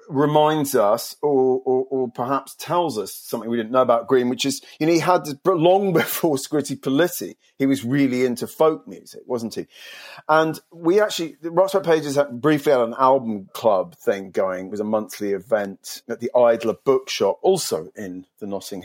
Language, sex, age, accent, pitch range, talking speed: English, male, 40-59, British, 115-150 Hz, 180 wpm